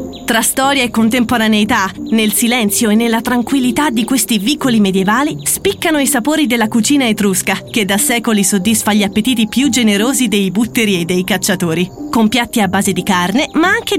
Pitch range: 205-285 Hz